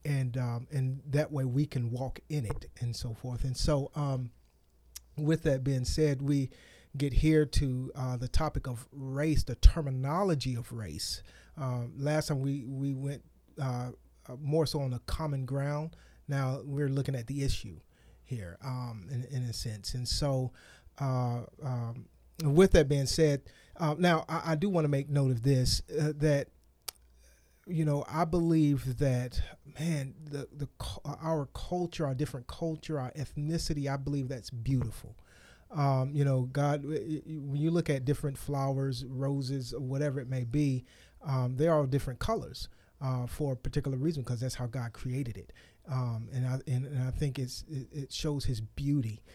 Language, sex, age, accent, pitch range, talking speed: English, male, 40-59, American, 125-145 Hz, 175 wpm